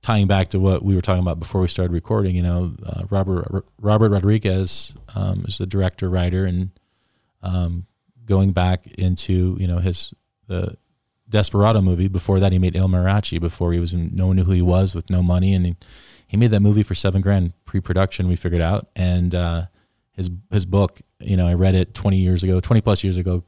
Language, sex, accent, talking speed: English, male, American, 210 wpm